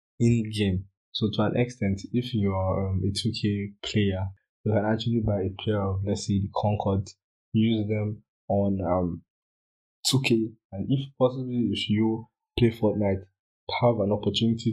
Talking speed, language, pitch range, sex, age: 160 wpm, English, 100-110 Hz, male, 20-39